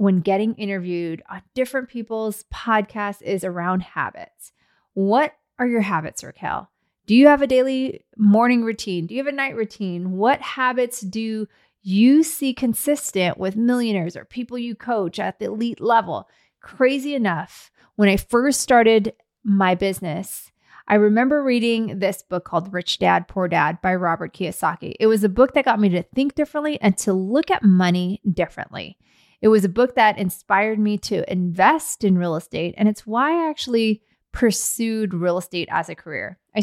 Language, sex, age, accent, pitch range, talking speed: English, female, 30-49, American, 185-240 Hz, 170 wpm